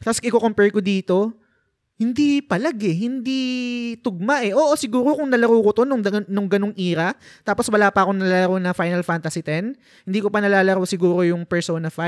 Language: Filipino